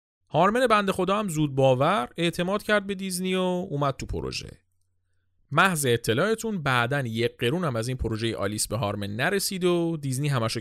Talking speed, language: 175 wpm, Persian